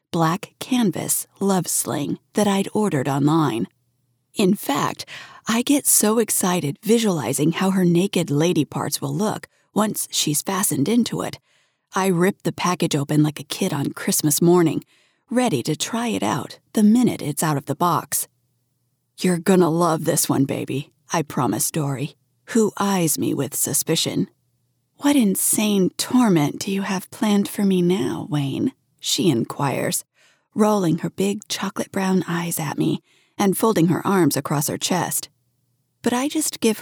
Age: 40-59